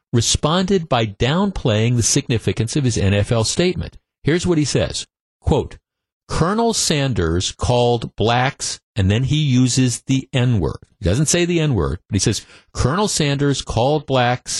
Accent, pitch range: American, 115-155 Hz